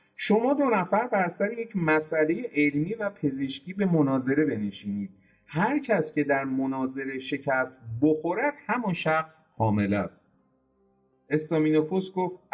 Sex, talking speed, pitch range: male, 130 wpm, 115-165 Hz